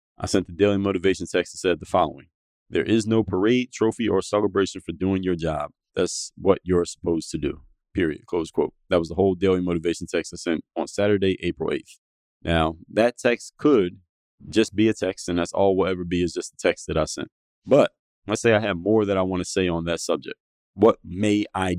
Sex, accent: male, American